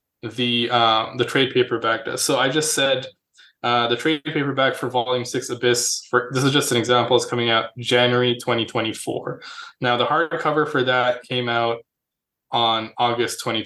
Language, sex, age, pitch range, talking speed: English, male, 20-39, 120-145 Hz, 180 wpm